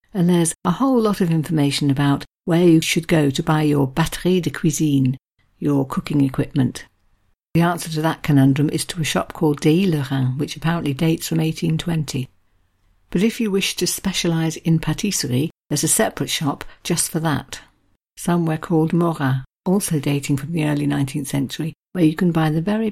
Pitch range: 140-170 Hz